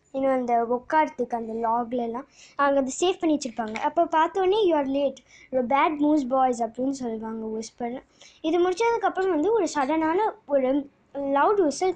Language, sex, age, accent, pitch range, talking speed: Tamil, male, 20-39, native, 250-315 Hz, 150 wpm